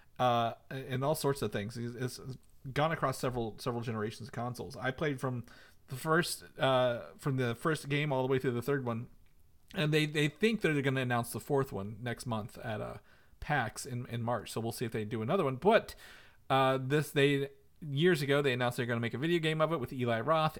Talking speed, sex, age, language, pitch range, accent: 225 wpm, male, 40-59, English, 125-155 Hz, American